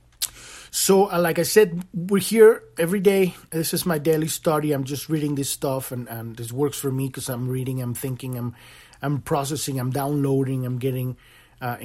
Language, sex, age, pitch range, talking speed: English, male, 30-49, 125-155 Hz, 190 wpm